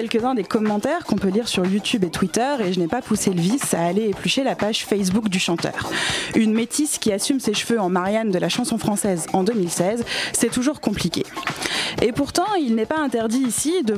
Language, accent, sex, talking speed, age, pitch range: French, French, female, 215 wpm, 20-39, 195-240 Hz